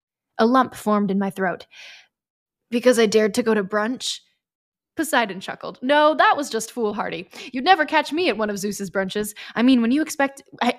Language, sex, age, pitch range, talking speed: English, female, 10-29, 200-240 Hz, 190 wpm